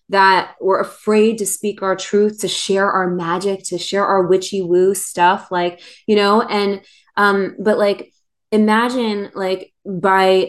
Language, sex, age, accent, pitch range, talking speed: English, female, 20-39, American, 180-210 Hz, 155 wpm